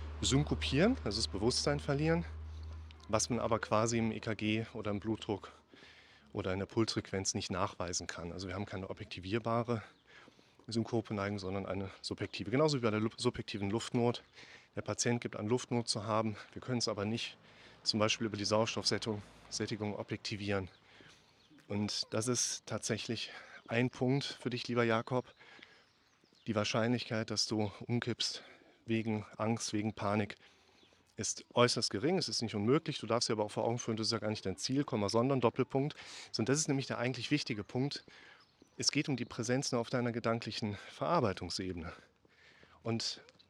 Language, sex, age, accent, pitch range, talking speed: German, male, 30-49, German, 105-125 Hz, 165 wpm